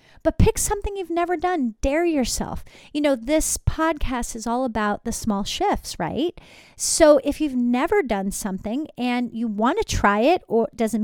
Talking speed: 180 wpm